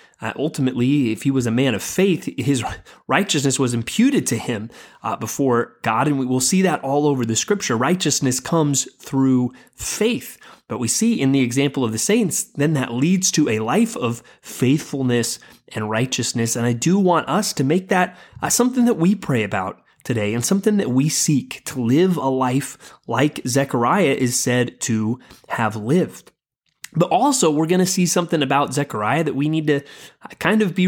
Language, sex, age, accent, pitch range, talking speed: English, male, 30-49, American, 125-175 Hz, 190 wpm